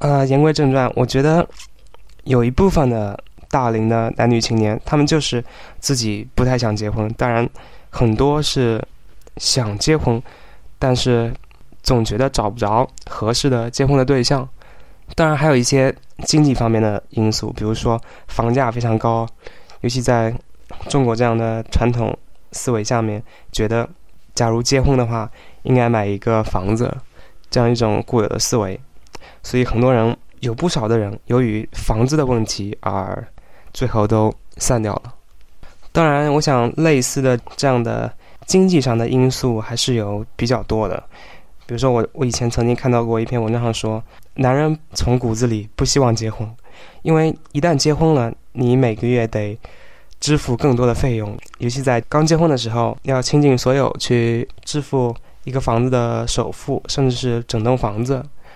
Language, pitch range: English, 110-135 Hz